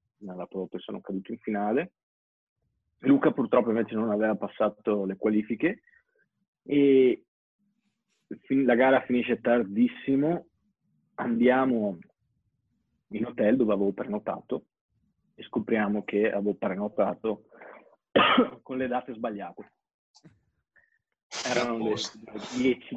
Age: 30-49